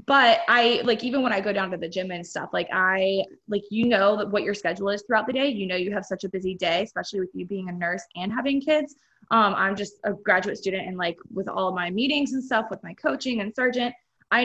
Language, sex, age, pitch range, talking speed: English, female, 20-39, 190-230 Hz, 265 wpm